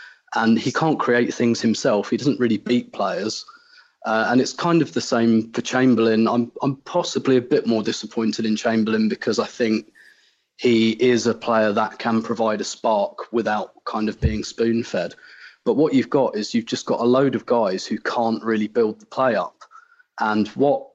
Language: English